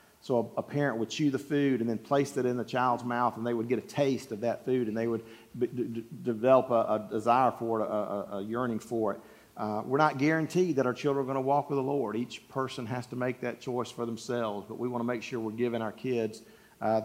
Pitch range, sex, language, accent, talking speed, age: 115-135 Hz, male, English, American, 260 wpm, 40-59